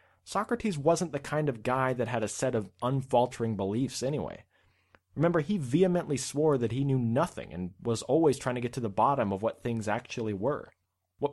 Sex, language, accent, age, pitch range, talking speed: male, English, American, 30-49, 110-160 Hz, 195 wpm